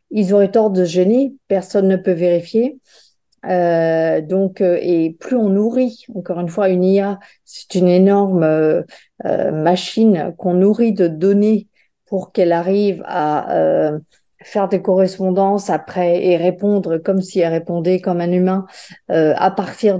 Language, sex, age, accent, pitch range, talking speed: French, female, 50-69, French, 170-205 Hz, 150 wpm